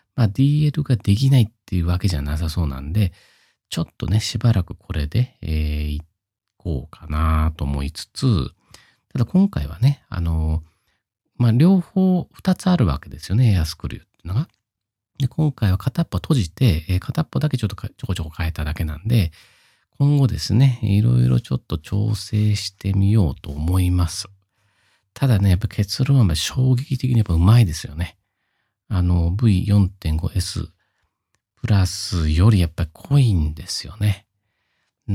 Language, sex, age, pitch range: Japanese, male, 40-59, 85-110 Hz